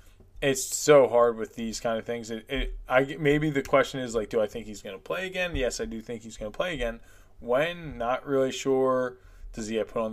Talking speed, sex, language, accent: 245 wpm, male, English, American